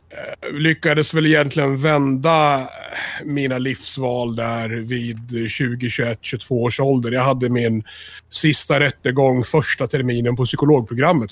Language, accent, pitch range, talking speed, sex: Swedish, native, 110-130 Hz, 115 wpm, male